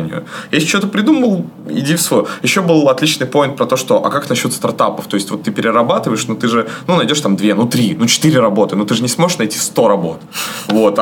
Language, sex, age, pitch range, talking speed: Russian, male, 20-39, 105-150 Hz, 245 wpm